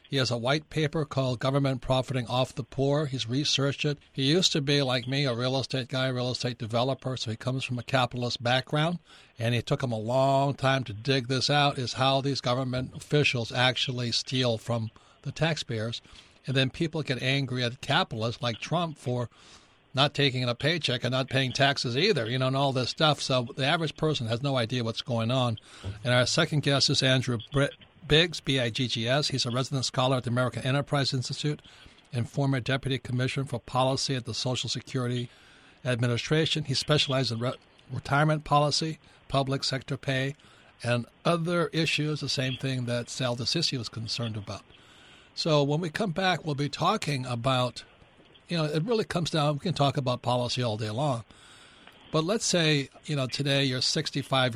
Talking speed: 185 wpm